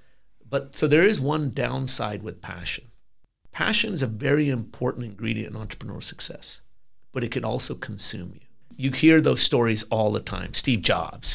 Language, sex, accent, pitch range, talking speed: English, male, American, 110-135 Hz, 170 wpm